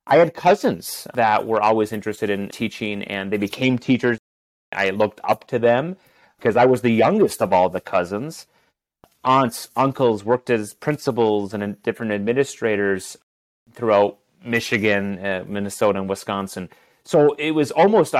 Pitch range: 100-130 Hz